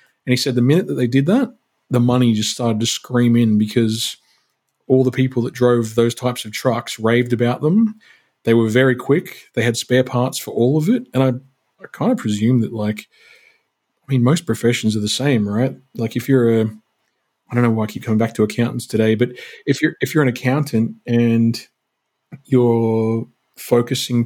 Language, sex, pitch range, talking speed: English, male, 110-130 Hz, 205 wpm